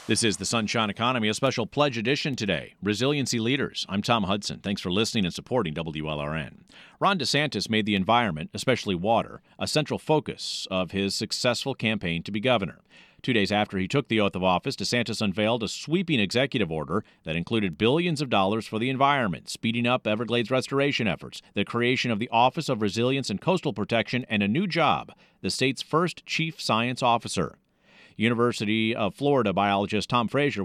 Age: 50-69